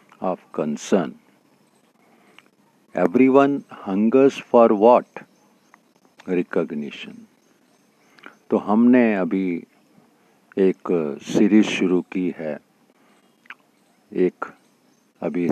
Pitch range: 85-115 Hz